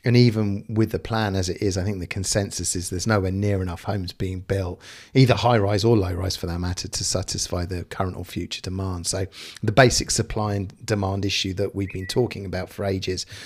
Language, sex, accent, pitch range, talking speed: English, male, British, 95-110 Hz, 225 wpm